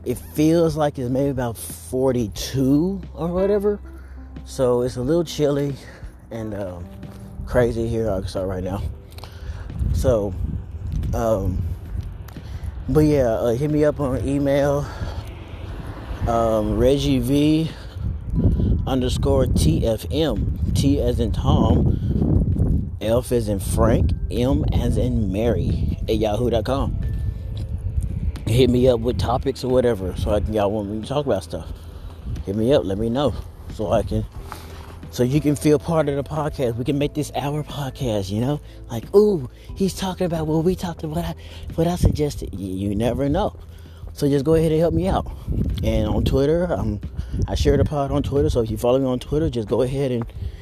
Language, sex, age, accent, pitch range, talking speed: English, male, 30-49, American, 90-135 Hz, 165 wpm